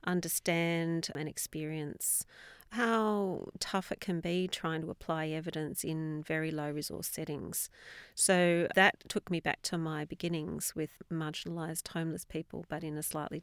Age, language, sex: 40-59, English, female